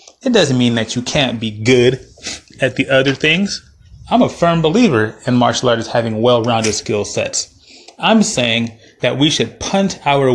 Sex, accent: male, American